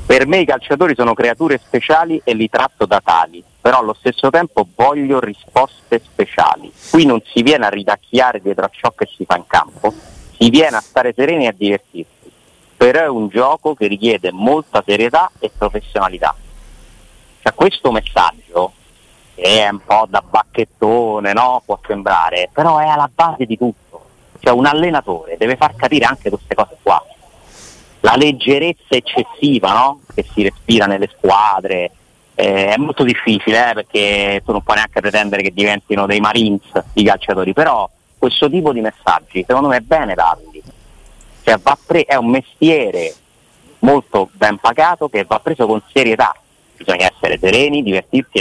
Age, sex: 30-49, male